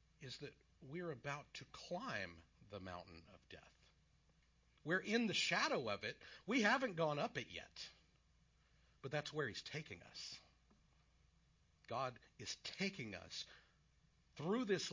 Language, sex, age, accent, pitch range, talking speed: English, male, 50-69, American, 100-155 Hz, 135 wpm